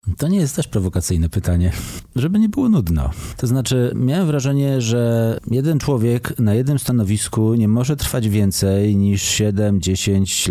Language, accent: Polish, native